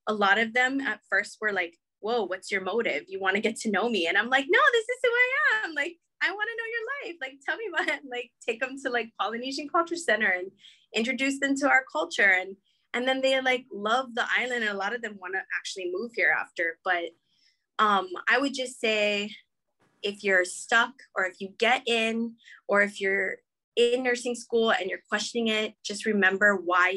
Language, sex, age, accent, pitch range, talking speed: English, female, 20-39, American, 200-265 Hz, 225 wpm